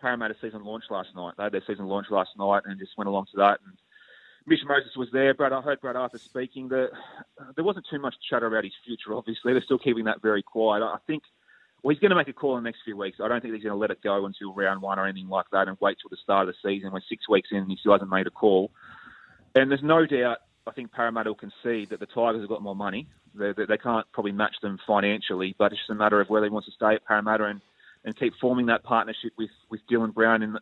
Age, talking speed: 30-49, 280 wpm